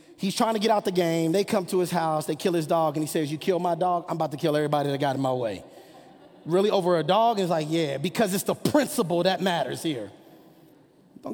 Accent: American